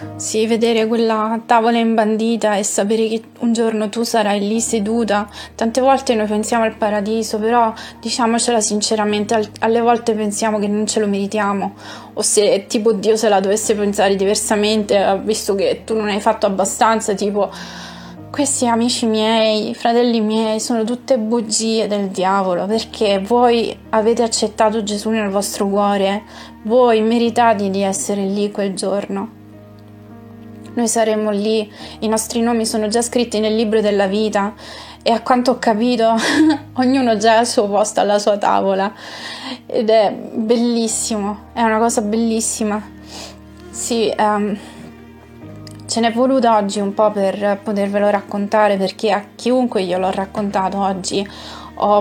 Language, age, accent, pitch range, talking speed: Italian, 20-39, native, 200-230 Hz, 145 wpm